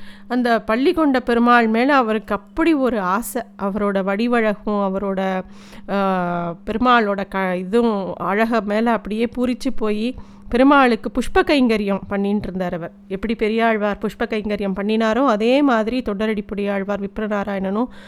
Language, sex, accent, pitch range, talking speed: Tamil, female, native, 205-250 Hz, 120 wpm